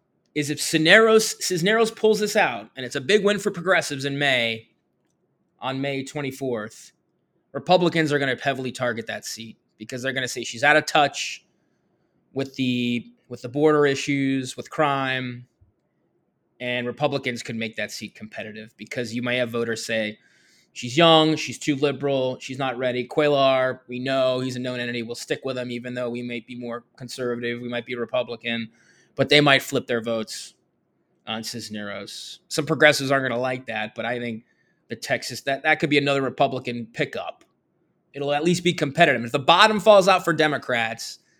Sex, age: male, 20-39